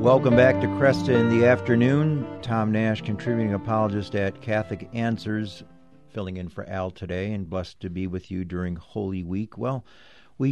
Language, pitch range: English, 95-120 Hz